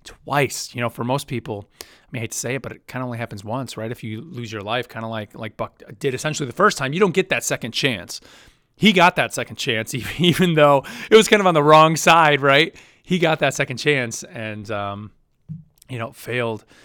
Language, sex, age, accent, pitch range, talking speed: English, male, 30-49, American, 115-145 Hz, 240 wpm